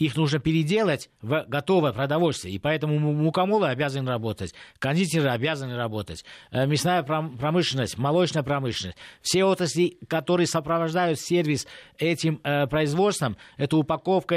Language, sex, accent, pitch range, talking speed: Russian, male, native, 135-170 Hz, 115 wpm